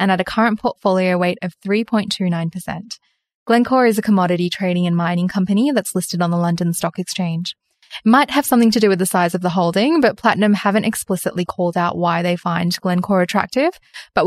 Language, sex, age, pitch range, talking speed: English, female, 10-29, 175-215 Hz, 200 wpm